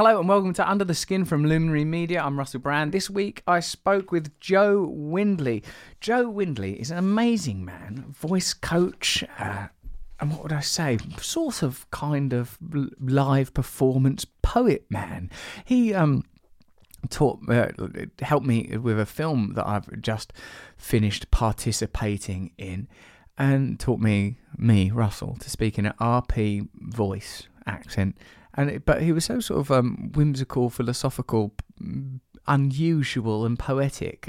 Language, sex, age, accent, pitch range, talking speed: English, male, 30-49, British, 115-150 Hz, 145 wpm